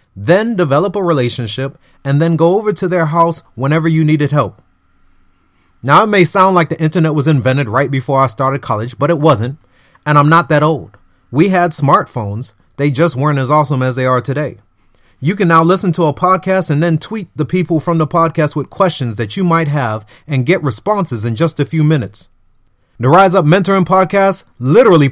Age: 30-49